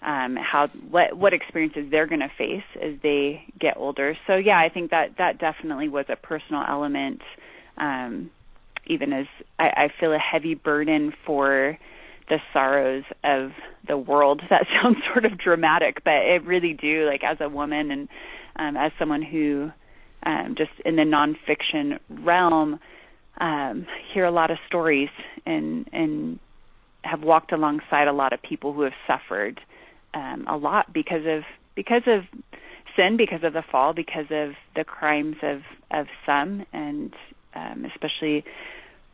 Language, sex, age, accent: English, female, 30-49, American